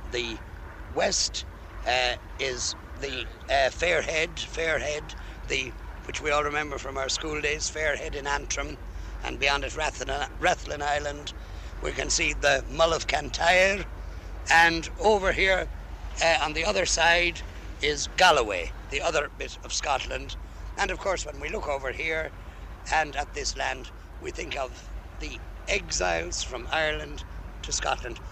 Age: 60-79